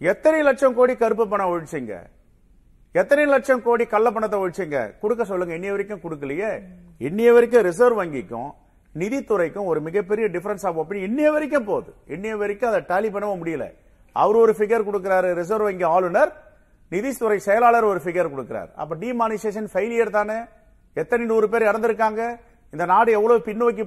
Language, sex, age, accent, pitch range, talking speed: Tamil, male, 40-59, native, 175-240 Hz, 45 wpm